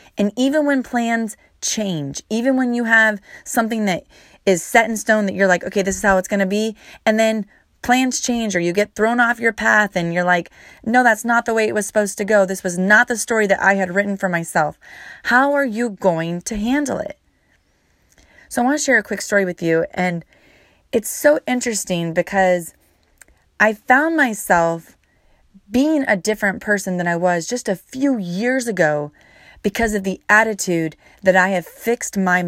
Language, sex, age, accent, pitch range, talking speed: English, female, 30-49, American, 165-215 Hz, 200 wpm